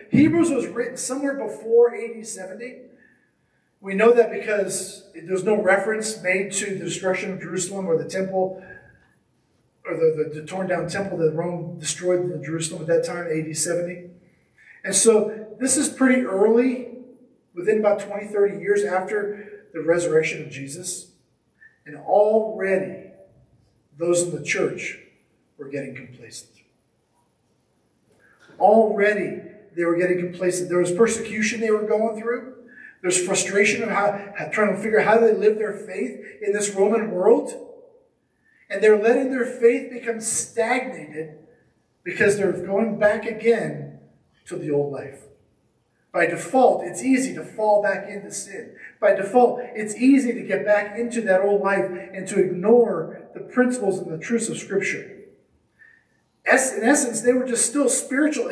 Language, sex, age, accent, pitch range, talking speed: English, male, 40-59, American, 180-235 Hz, 150 wpm